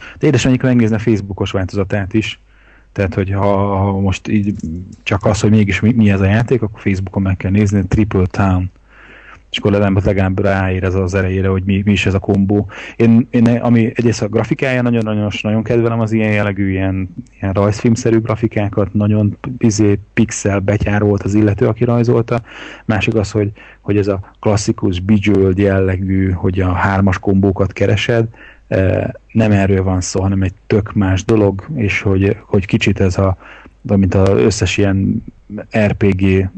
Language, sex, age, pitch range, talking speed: Hungarian, male, 30-49, 95-110 Hz, 165 wpm